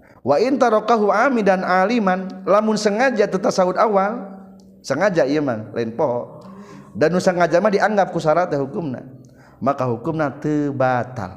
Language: Indonesian